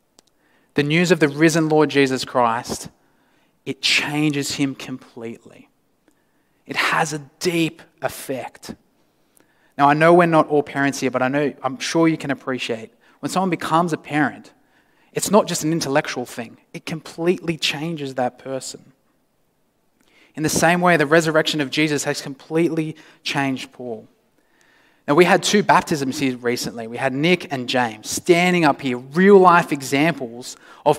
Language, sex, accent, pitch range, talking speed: English, male, Australian, 130-165 Hz, 155 wpm